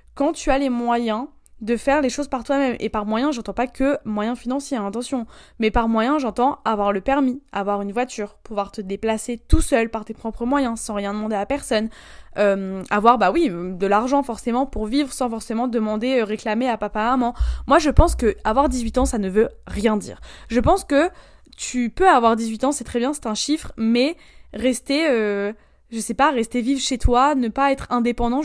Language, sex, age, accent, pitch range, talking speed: French, female, 20-39, French, 215-275 Hz, 210 wpm